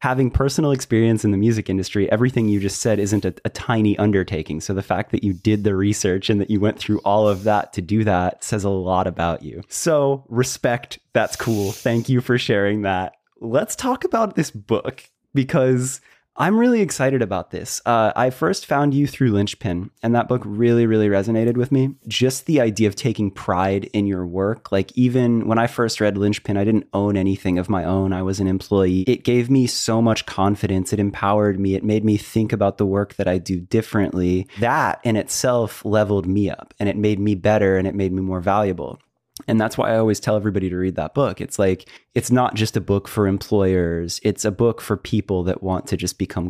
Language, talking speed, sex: English, 220 wpm, male